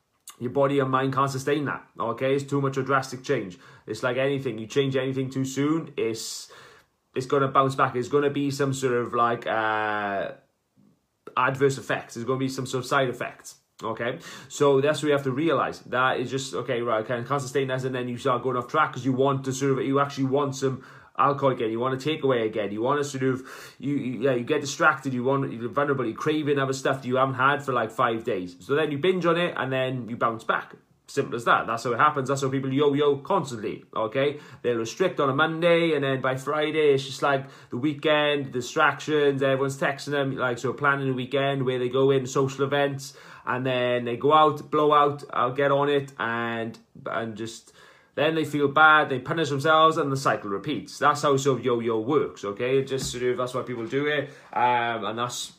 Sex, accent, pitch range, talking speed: male, British, 125-145 Hz, 230 wpm